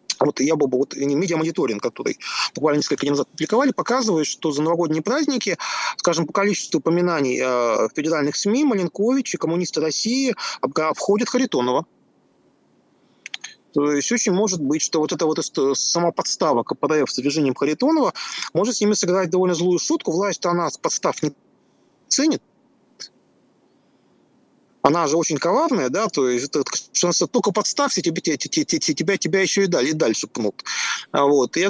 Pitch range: 145-215 Hz